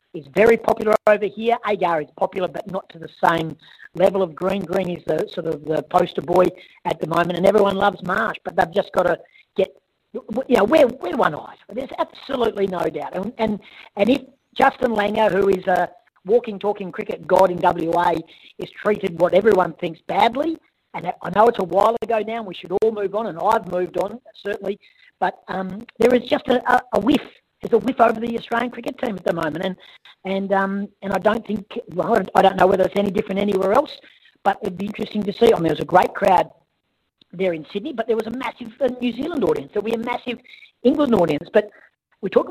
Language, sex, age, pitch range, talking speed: English, female, 50-69, 180-235 Hz, 220 wpm